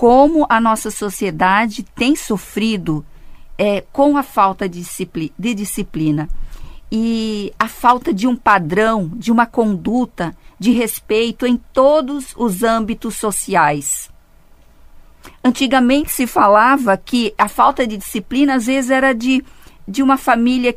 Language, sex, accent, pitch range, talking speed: Portuguese, female, Brazilian, 215-260 Hz, 125 wpm